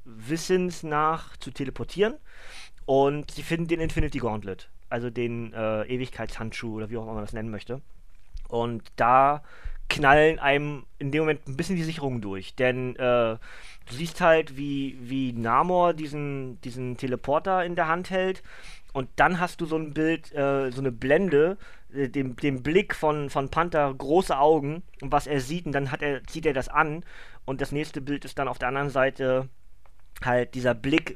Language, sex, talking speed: German, male, 180 wpm